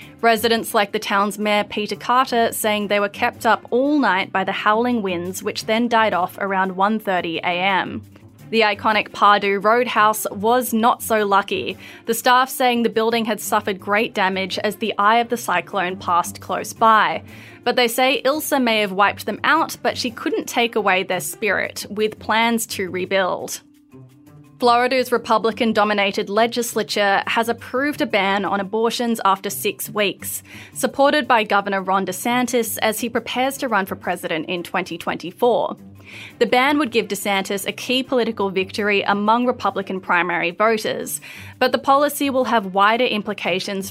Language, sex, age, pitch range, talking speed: English, female, 20-39, 190-235 Hz, 160 wpm